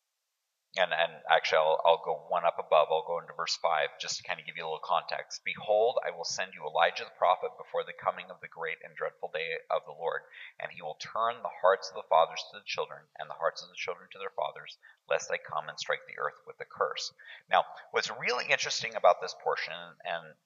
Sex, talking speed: male, 240 wpm